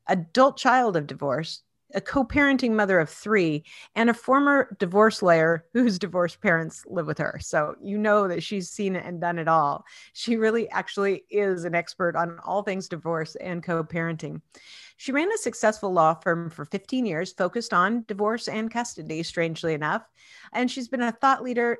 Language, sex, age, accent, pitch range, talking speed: English, female, 40-59, American, 165-230 Hz, 180 wpm